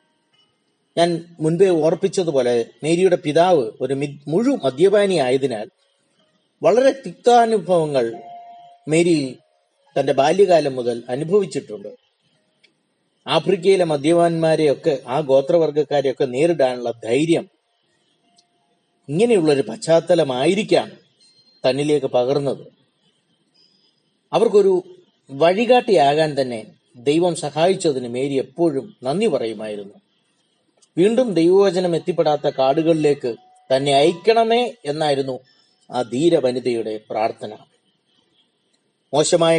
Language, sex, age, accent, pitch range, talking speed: Malayalam, male, 30-49, native, 135-190 Hz, 75 wpm